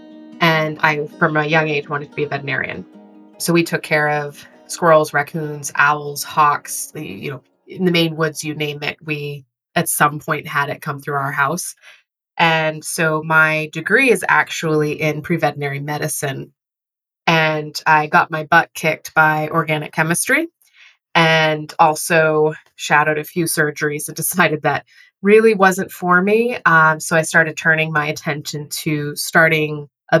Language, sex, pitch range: English, female, 150-165 Hz